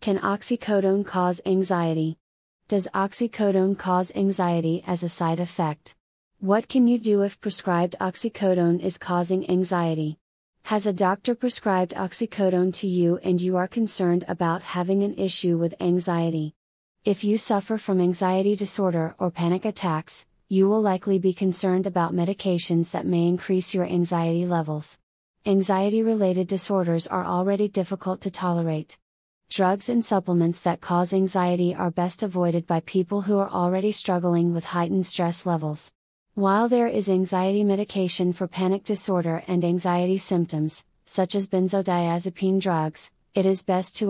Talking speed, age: 145 wpm, 30-49